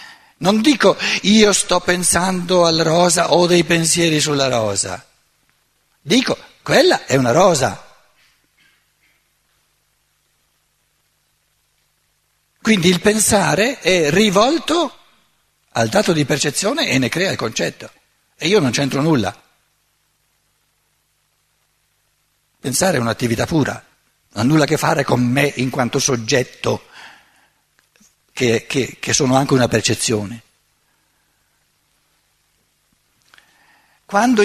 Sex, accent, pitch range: male, native, 135-200 Hz